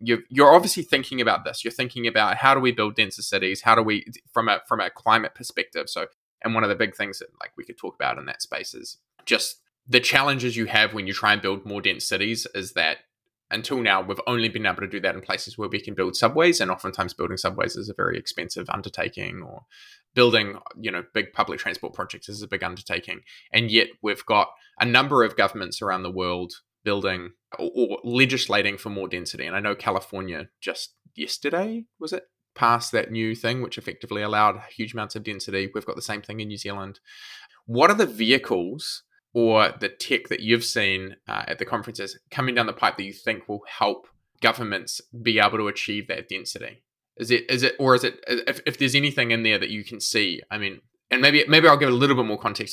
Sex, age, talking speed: male, 20-39, 225 wpm